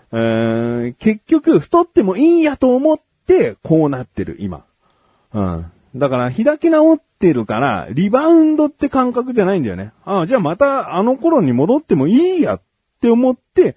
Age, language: 40-59, Japanese